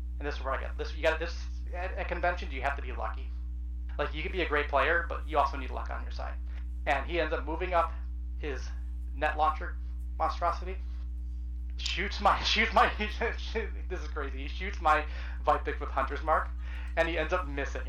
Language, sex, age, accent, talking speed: English, male, 30-49, American, 215 wpm